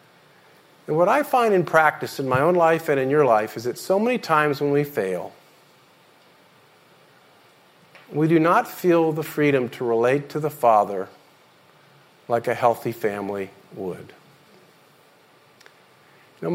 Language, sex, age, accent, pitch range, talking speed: English, male, 50-69, American, 125-165 Hz, 145 wpm